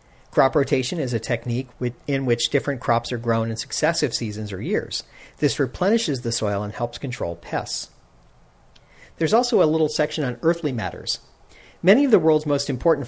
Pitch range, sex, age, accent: 120-150 Hz, male, 40-59, American